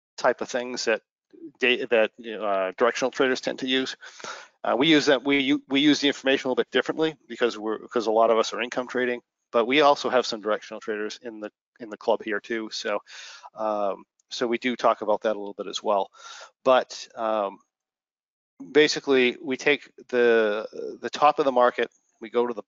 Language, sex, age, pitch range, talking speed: English, male, 40-59, 115-150 Hz, 205 wpm